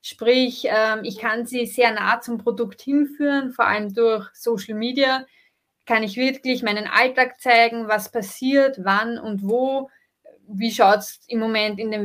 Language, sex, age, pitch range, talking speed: German, female, 20-39, 210-240 Hz, 160 wpm